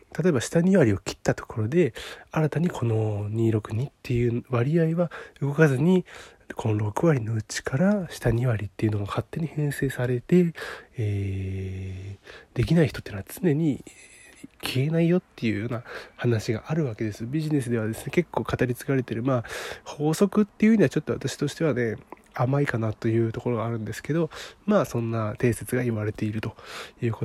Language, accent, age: Japanese, native, 20-39